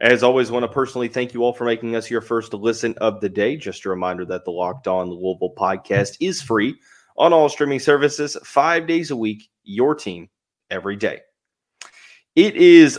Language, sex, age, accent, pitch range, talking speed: English, male, 30-49, American, 110-150 Hz, 200 wpm